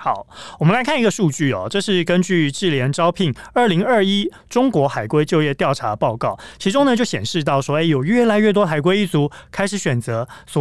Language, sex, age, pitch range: Chinese, male, 30-49, 135-185 Hz